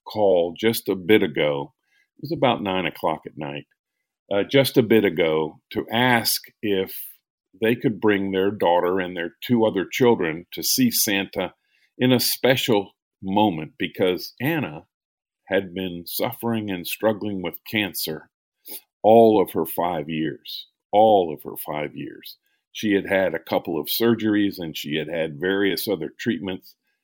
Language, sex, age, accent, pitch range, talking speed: English, male, 50-69, American, 95-115 Hz, 155 wpm